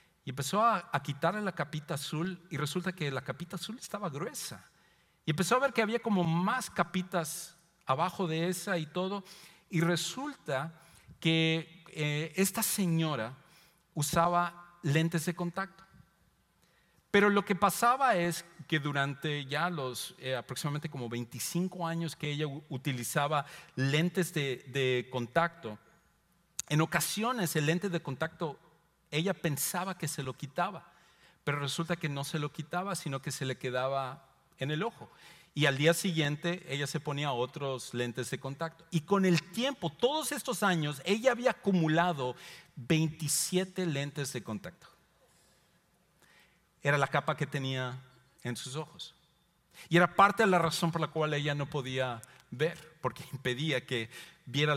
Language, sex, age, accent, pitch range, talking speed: English, male, 50-69, Mexican, 145-175 Hz, 150 wpm